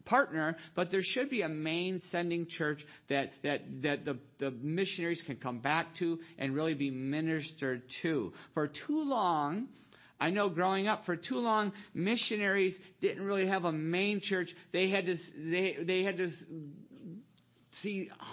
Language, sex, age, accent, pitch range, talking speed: English, male, 50-69, American, 175-245 Hz, 160 wpm